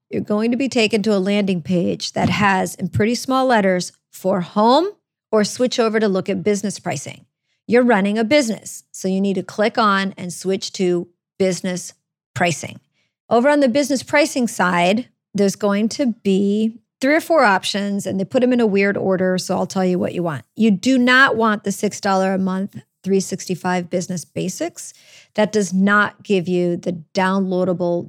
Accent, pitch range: American, 185-225 Hz